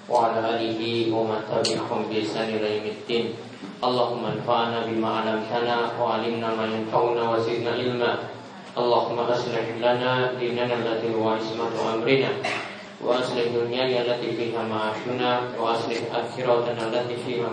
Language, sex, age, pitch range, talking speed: Malay, male, 20-39, 115-125 Hz, 135 wpm